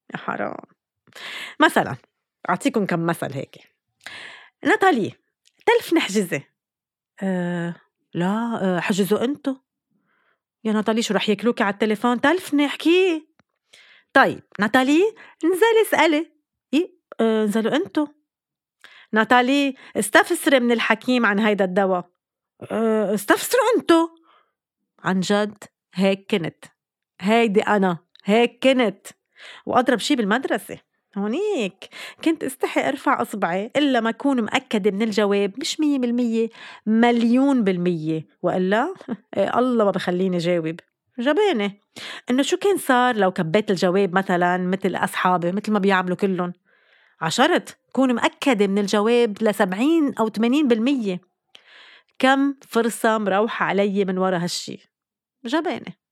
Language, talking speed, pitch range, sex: Arabic, 115 wpm, 200-280 Hz, female